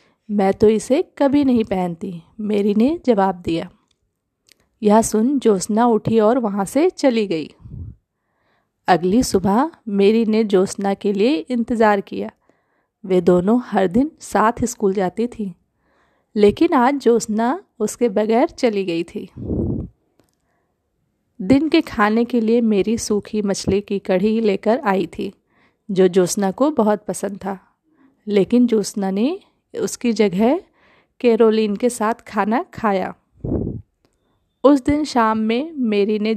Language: Hindi